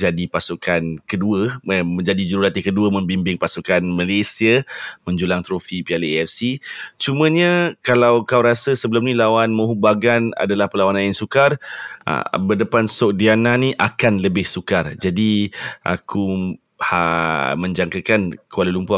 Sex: male